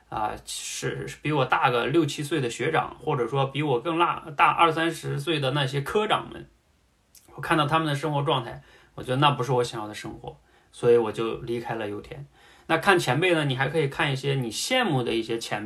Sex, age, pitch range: male, 20-39, 115-155 Hz